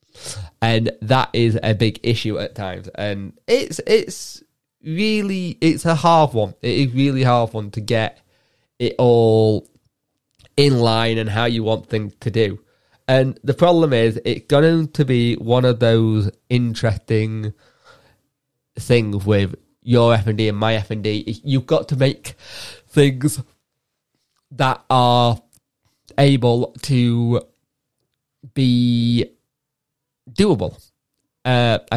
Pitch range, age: 105-125 Hz, 20-39